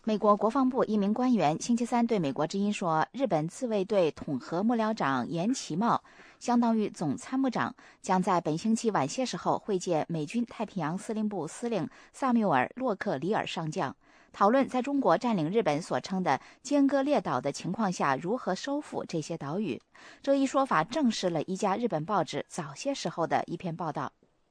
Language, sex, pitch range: English, female, 170-250 Hz